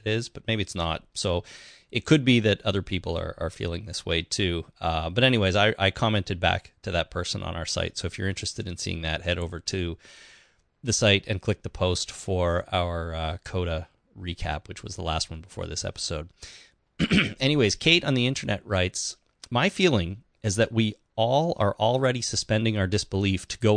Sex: male